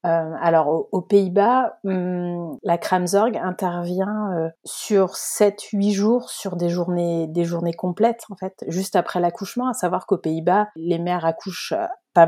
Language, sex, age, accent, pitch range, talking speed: French, female, 30-49, French, 165-210 Hz, 155 wpm